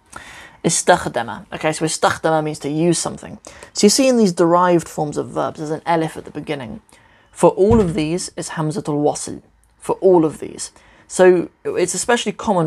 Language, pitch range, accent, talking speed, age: English, 150-175 Hz, British, 180 wpm, 20-39